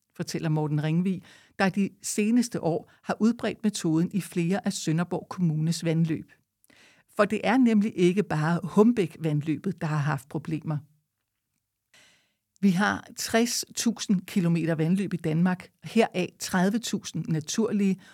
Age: 60-79